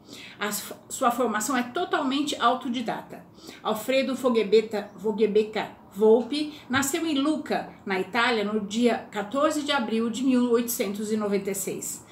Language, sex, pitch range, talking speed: Portuguese, female, 220-275 Hz, 100 wpm